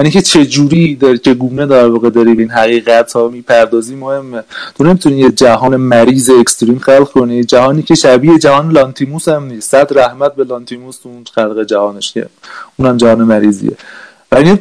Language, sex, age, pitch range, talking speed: Persian, male, 30-49, 120-145 Hz, 165 wpm